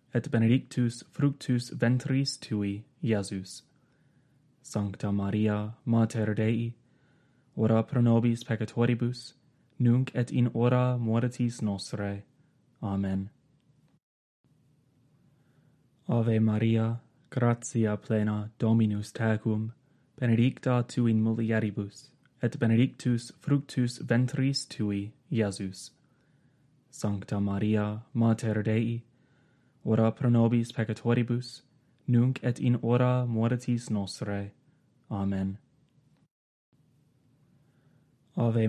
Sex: male